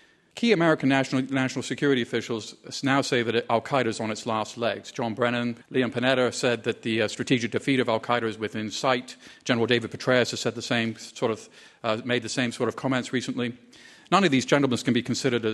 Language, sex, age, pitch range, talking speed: English, male, 40-59, 115-130 Hz, 205 wpm